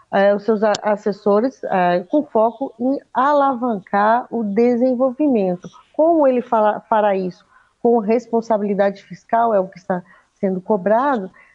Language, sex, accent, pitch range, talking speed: Portuguese, female, Brazilian, 210-260 Hz, 115 wpm